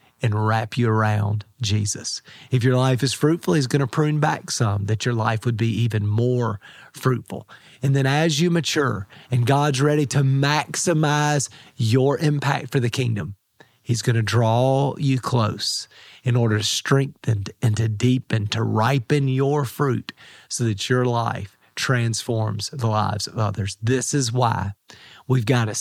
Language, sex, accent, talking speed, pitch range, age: English, male, American, 165 wpm, 110-135 Hz, 40-59